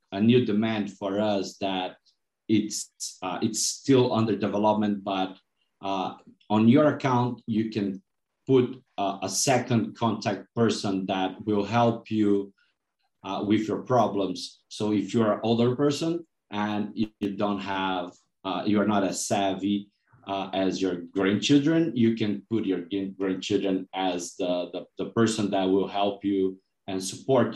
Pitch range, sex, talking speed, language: 95-115 Hz, male, 150 wpm, English